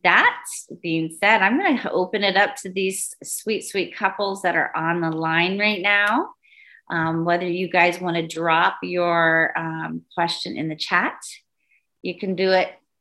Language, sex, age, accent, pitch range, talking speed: English, female, 30-49, American, 160-205 Hz, 175 wpm